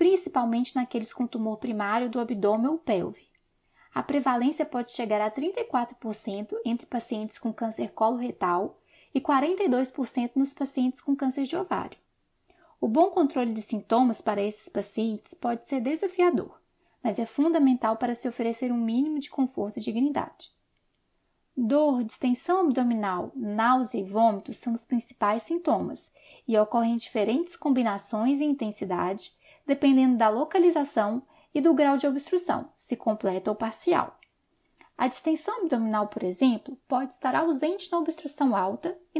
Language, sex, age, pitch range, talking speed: Portuguese, female, 10-29, 225-295 Hz, 140 wpm